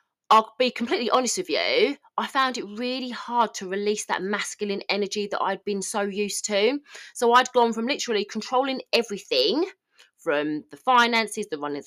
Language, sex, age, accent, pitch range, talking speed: English, female, 20-39, British, 185-265 Hz, 175 wpm